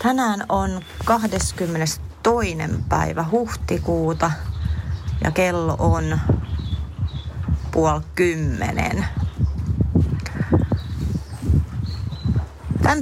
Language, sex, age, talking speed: Finnish, female, 30-49, 50 wpm